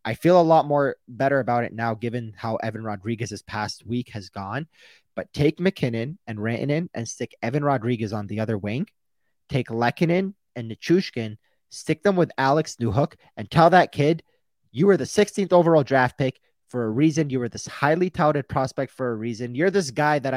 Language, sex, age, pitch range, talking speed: English, male, 30-49, 115-155 Hz, 195 wpm